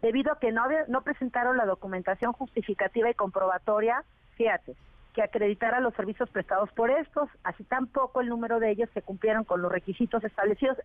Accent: Mexican